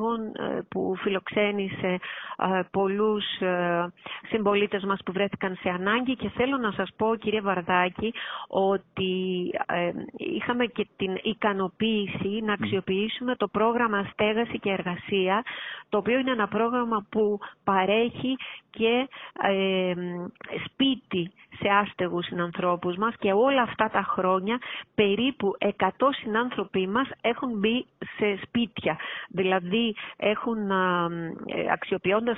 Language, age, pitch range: Greek, 30-49, 190-225 Hz